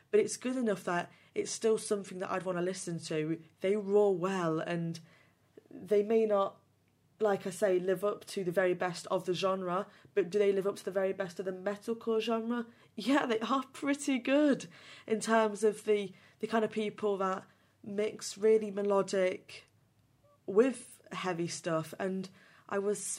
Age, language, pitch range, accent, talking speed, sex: 20-39, English, 165-210 Hz, British, 180 wpm, female